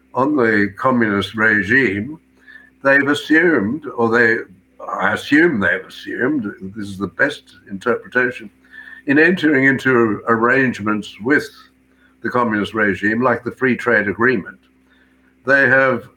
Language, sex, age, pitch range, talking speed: English, male, 60-79, 105-135 Hz, 120 wpm